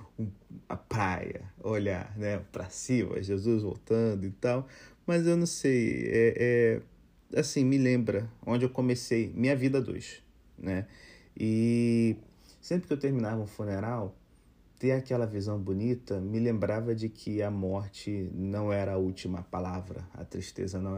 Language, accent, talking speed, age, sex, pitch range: Portuguese, Brazilian, 145 wpm, 30-49, male, 95-125 Hz